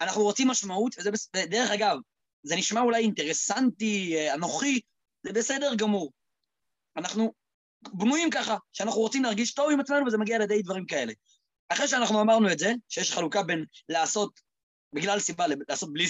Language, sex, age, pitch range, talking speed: Hebrew, male, 20-39, 180-245 Hz, 150 wpm